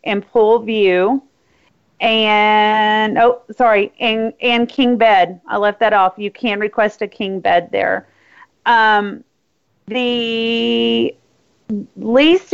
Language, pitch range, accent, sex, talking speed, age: English, 210-255 Hz, American, female, 115 wpm, 40-59